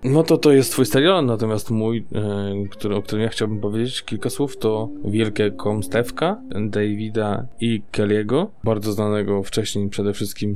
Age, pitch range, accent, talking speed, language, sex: 20-39, 105-120 Hz, native, 165 wpm, Polish, male